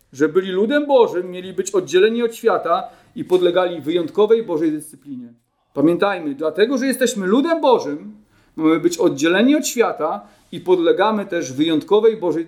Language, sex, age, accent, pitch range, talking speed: Polish, male, 40-59, native, 200-255 Hz, 145 wpm